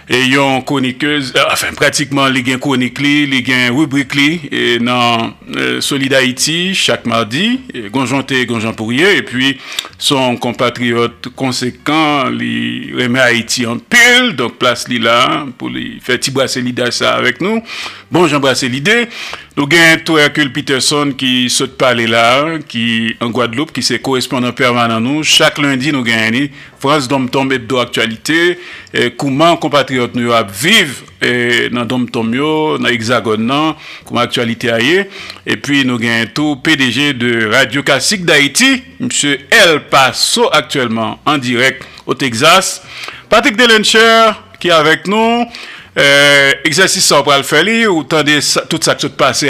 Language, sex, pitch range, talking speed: French, male, 120-150 Hz, 145 wpm